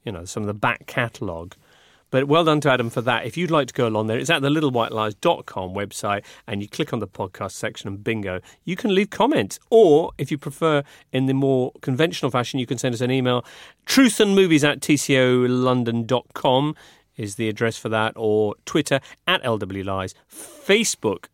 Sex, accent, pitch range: male, British, 115-150 Hz